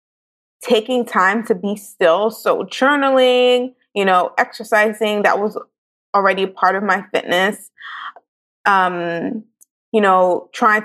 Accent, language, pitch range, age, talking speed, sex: American, English, 200-250 Hz, 20-39, 115 wpm, female